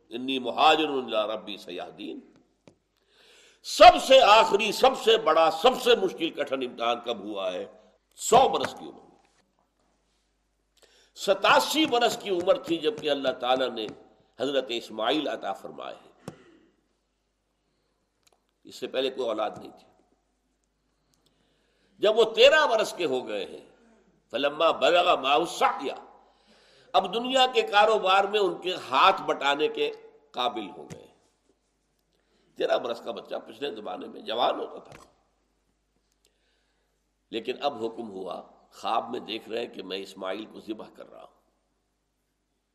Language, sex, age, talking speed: Urdu, male, 60-79, 130 wpm